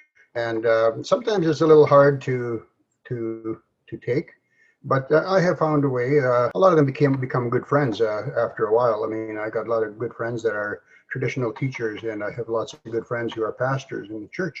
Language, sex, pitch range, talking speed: English, male, 115-150 Hz, 230 wpm